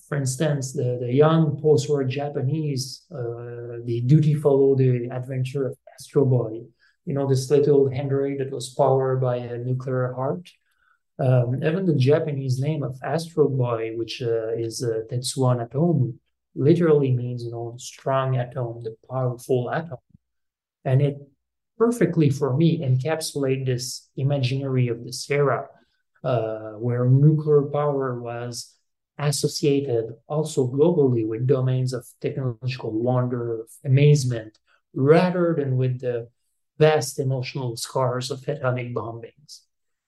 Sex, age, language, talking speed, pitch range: male, 30-49, English, 125 wpm, 125-145 Hz